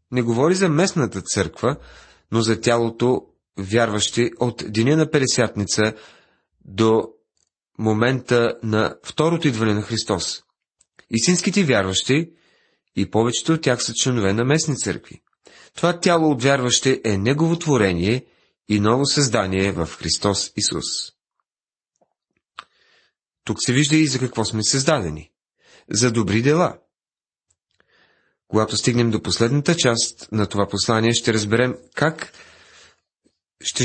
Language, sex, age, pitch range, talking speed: Bulgarian, male, 30-49, 100-130 Hz, 120 wpm